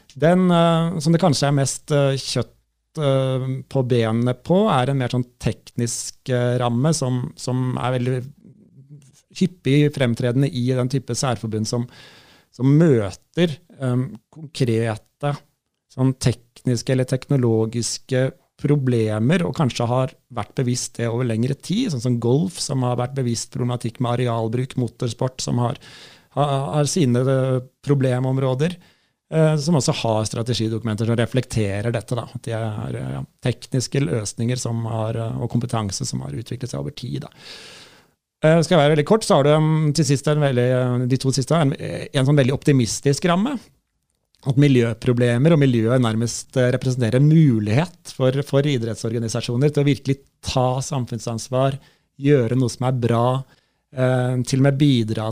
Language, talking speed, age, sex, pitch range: English, 135 wpm, 30-49, male, 120-140 Hz